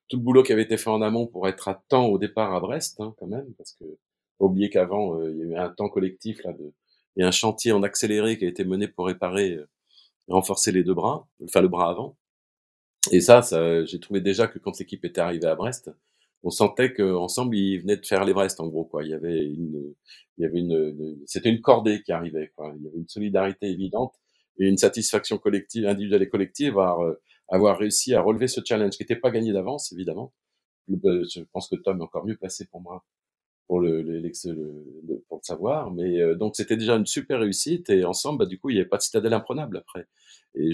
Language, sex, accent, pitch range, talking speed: French, male, French, 85-110 Hz, 230 wpm